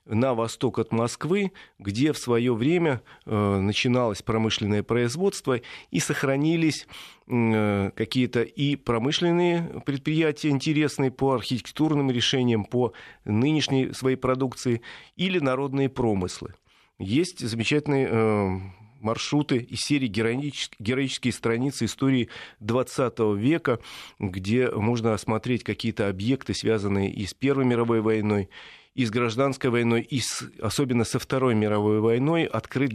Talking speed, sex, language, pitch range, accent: 115 wpm, male, Russian, 110-130 Hz, native